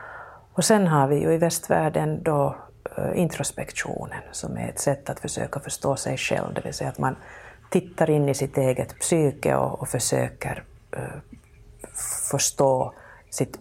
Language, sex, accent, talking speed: Finnish, female, native, 155 wpm